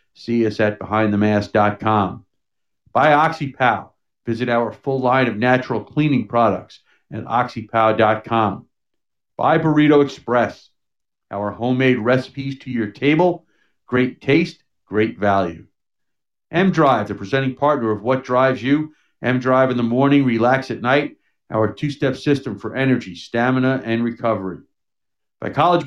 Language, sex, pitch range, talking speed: English, male, 115-145 Hz, 125 wpm